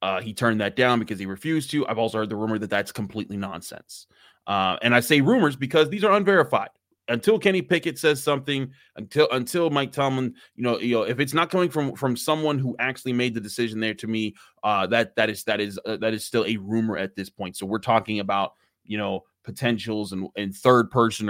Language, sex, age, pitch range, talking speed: English, male, 20-39, 105-135 Hz, 230 wpm